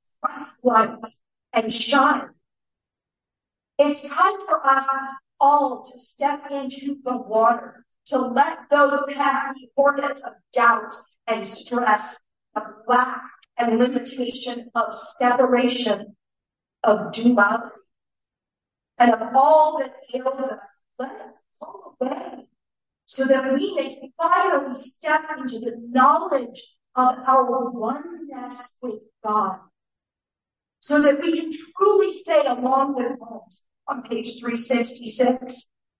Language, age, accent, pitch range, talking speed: English, 50-69, American, 235-275 Hz, 115 wpm